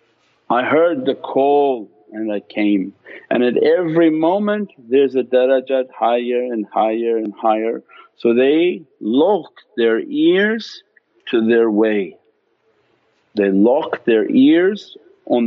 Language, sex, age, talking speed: English, male, 50-69, 125 wpm